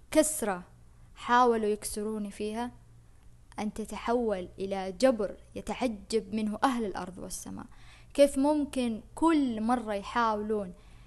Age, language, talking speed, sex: 20-39, Arabic, 100 wpm, female